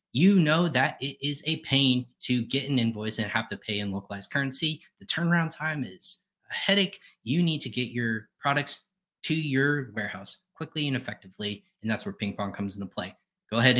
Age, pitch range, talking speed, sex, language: 20-39, 115-160 Hz, 200 wpm, male, English